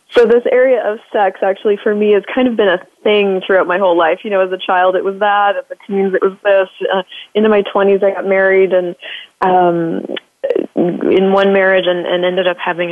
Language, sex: English, female